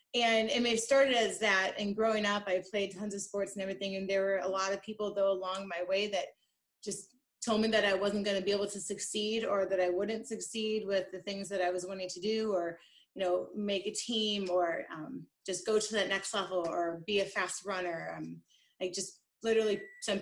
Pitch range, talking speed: 185-220 Hz, 235 wpm